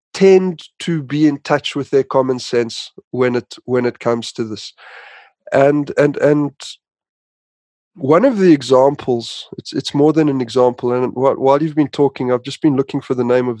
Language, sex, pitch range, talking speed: English, male, 120-140 Hz, 185 wpm